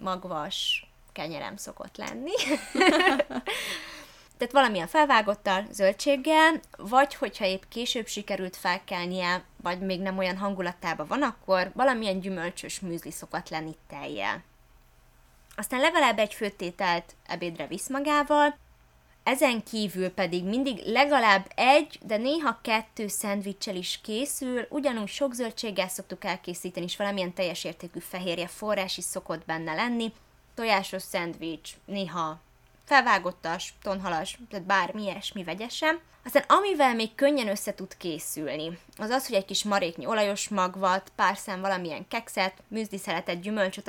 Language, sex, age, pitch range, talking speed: Hungarian, female, 20-39, 185-240 Hz, 125 wpm